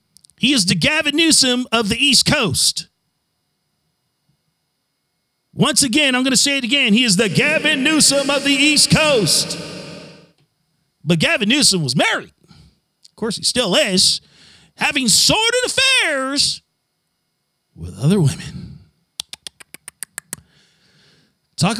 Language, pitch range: English, 205-280 Hz